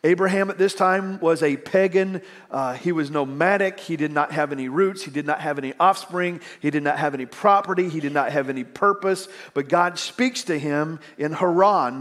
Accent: American